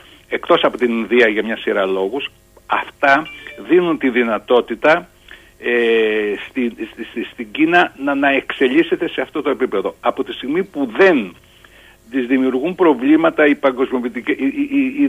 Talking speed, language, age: 145 wpm, Greek, 60-79